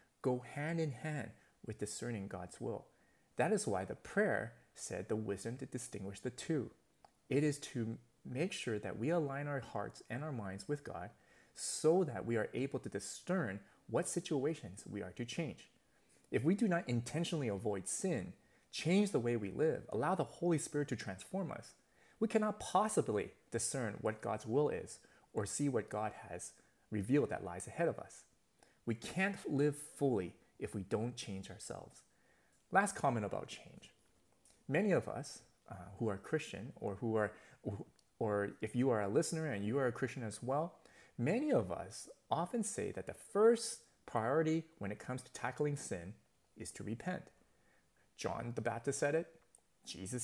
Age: 30-49